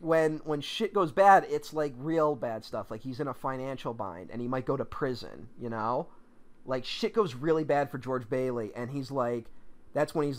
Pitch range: 120-160 Hz